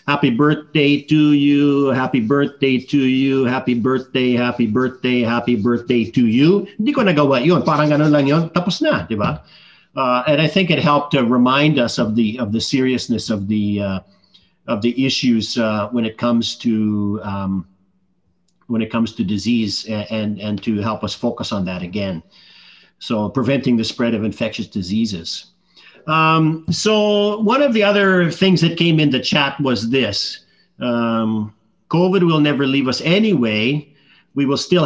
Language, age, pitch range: Filipino, 50-69, 115-160 Hz